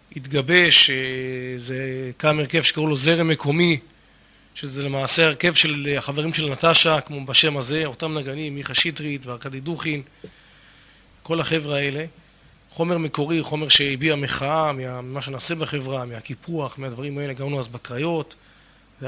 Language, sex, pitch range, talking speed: Hebrew, male, 135-160 Hz, 130 wpm